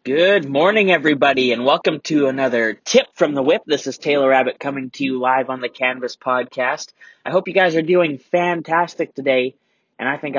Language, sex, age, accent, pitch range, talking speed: English, male, 20-39, American, 125-165 Hz, 195 wpm